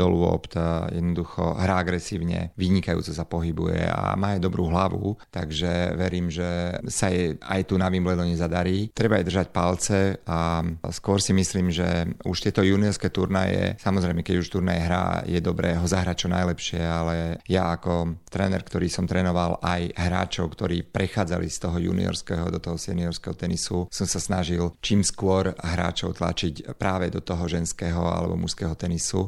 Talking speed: 155 wpm